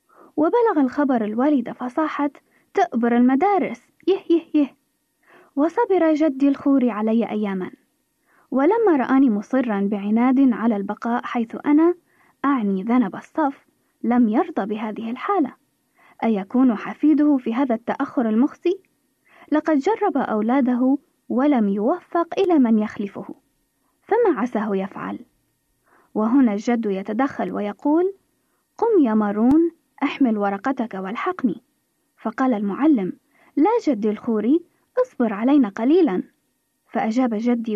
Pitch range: 225-315 Hz